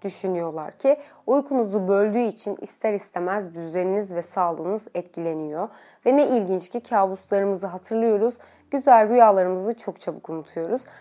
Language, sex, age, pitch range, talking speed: Turkish, female, 30-49, 180-245 Hz, 120 wpm